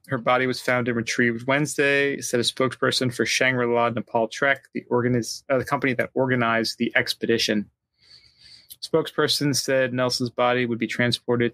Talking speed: 160 wpm